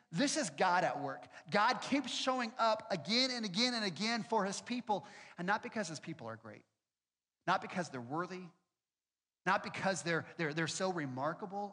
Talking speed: 180 wpm